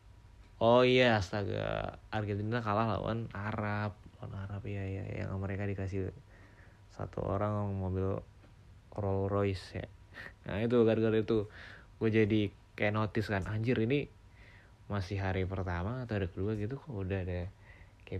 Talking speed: 135 wpm